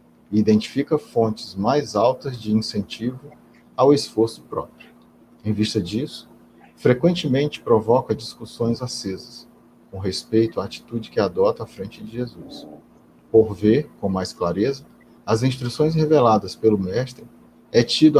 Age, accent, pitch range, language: 40-59, Brazilian, 100-125 Hz, Portuguese